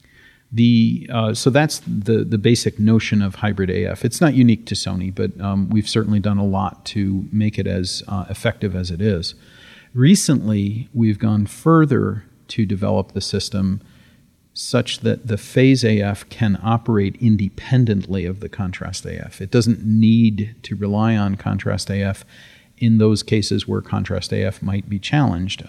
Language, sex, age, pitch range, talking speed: English, male, 40-59, 95-115 Hz, 160 wpm